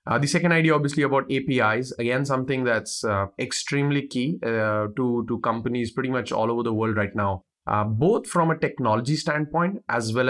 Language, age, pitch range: English, 30-49, 110-135 Hz